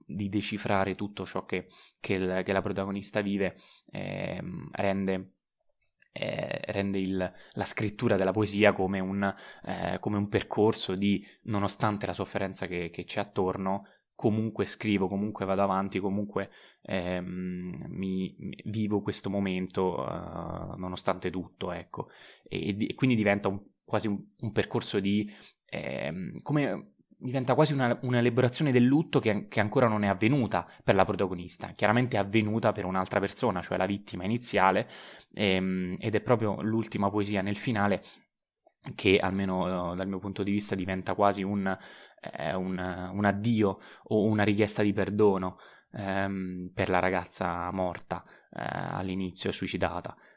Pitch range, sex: 95-105 Hz, male